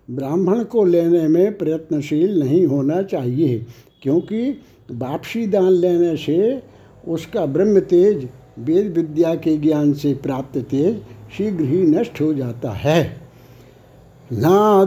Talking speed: 115 wpm